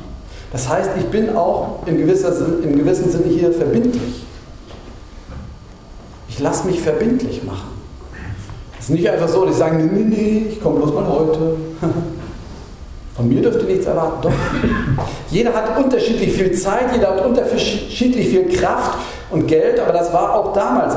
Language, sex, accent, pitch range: German, male, German, 120-185 Hz